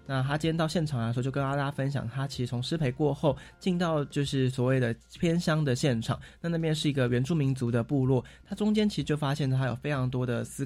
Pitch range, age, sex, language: 125-155 Hz, 20-39, male, Chinese